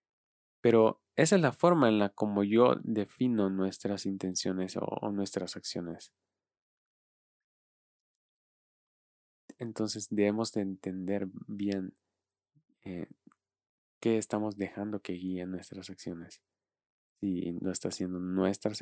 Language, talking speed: Spanish, 110 wpm